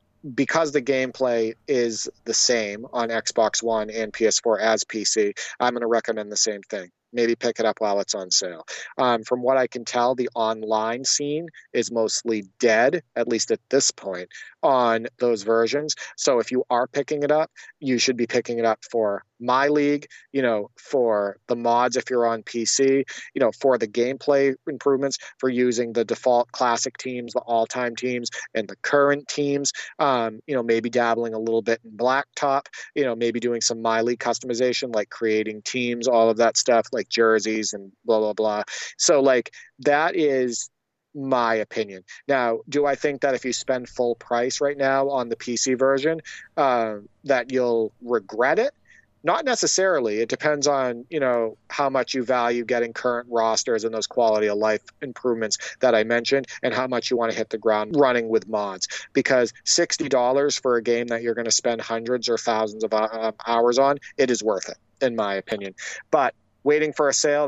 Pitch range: 115-135 Hz